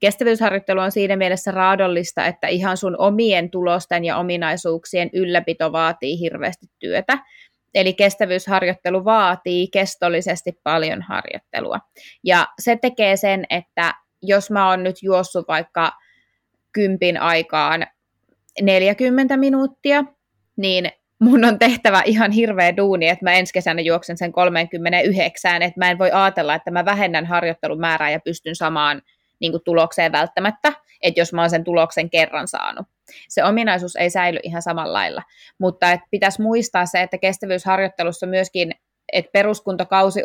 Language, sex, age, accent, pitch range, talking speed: Finnish, female, 20-39, native, 175-200 Hz, 135 wpm